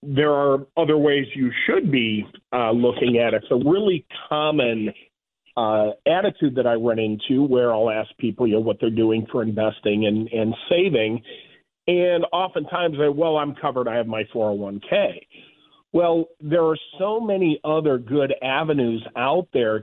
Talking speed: 165 wpm